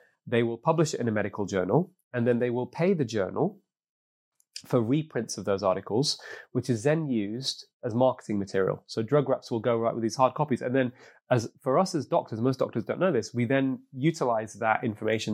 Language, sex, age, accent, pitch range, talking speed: English, male, 30-49, British, 105-130 Hz, 210 wpm